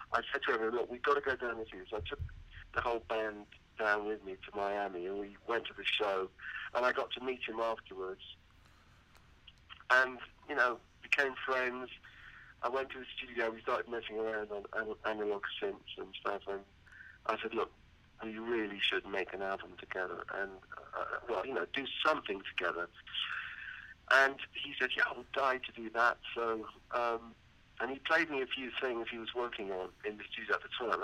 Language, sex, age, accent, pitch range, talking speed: English, male, 50-69, British, 105-130 Hz, 200 wpm